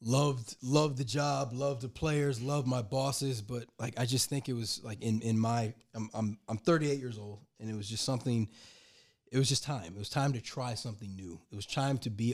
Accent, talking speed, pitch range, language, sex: American, 235 wpm, 105-125 Hz, English, male